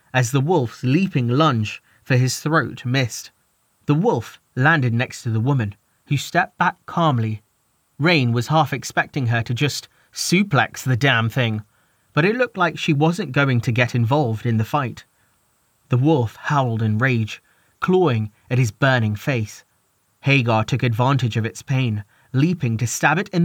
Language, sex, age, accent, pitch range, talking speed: English, male, 30-49, British, 115-155 Hz, 165 wpm